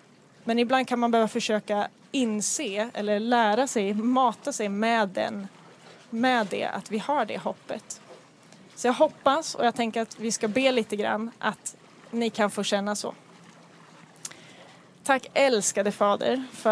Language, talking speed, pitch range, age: Swedish, 150 wpm, 215-250 Hz, 20-39